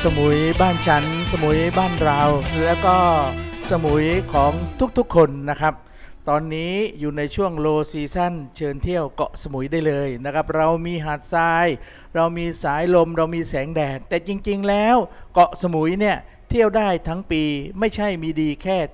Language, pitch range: Thai, 160-210 Hz